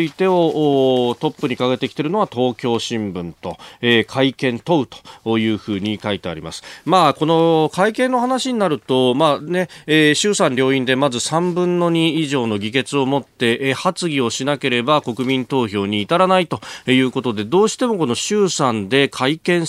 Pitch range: 120-175 Hz